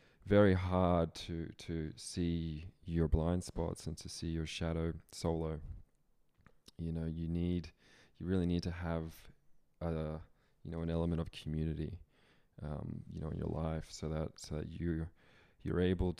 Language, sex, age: English, male, 20-39